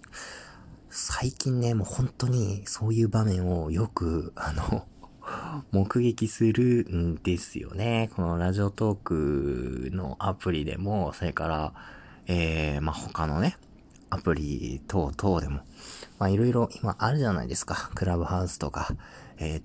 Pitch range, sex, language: 85-110 Hz, male, Japanese